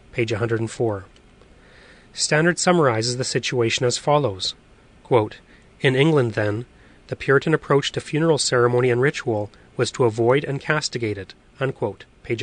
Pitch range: 115-145 Hz